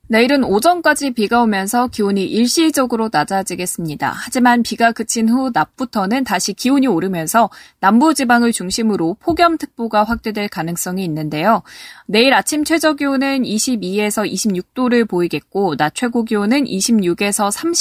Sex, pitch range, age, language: female, 180-250 Hz, 20-39, Korean